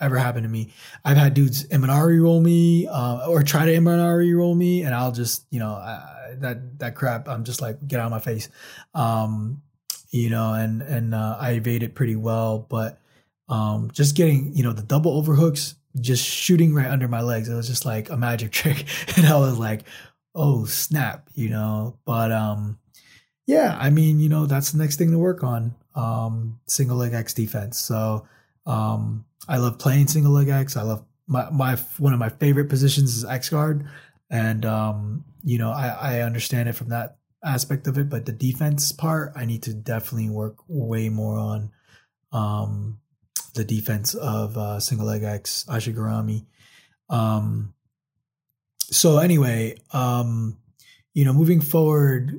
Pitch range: 110-145 Hz